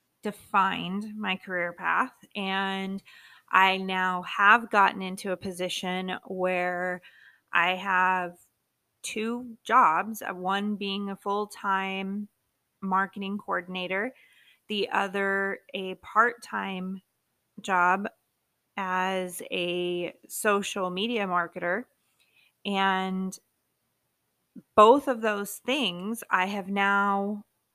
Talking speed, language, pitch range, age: 95 wpm, English, 185-210 Hz, 20-39